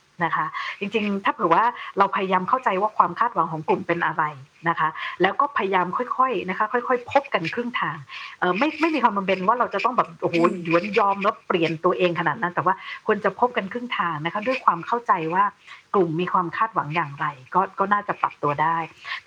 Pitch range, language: 180-235 Hz, Thai